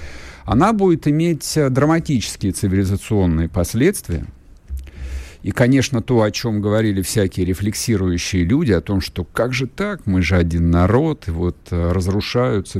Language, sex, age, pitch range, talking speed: Russian, male, 50-69, 85-120 Hz, 130 wpm